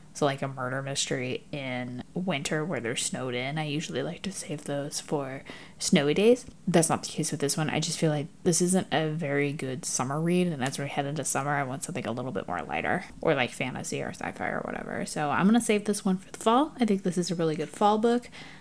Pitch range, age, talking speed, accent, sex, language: 155-215 Hz, 10-29, 250 wpm, American, female, English